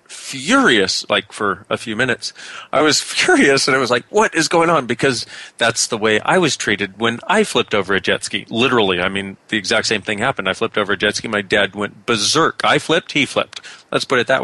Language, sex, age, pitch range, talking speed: English, male, 40-59, 110-150 Hz, 235 wpm